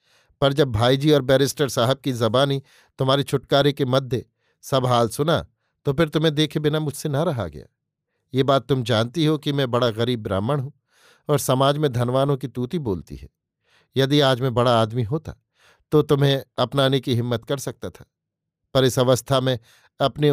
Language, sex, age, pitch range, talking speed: Hindi, male, 50-69, 120-140 Hz, 185 wpm